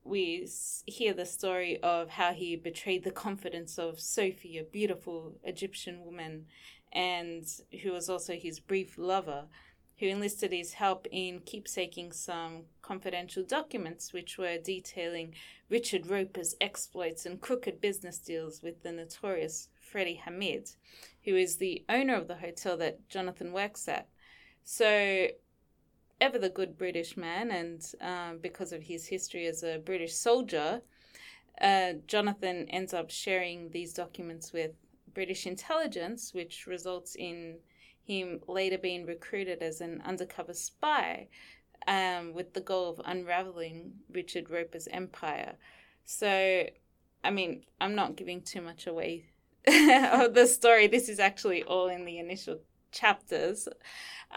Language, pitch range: English, 170-200 Hz